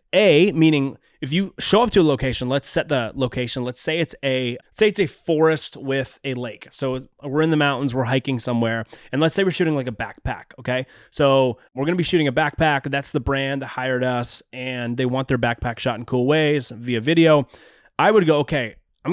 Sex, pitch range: male, 125-155 Hz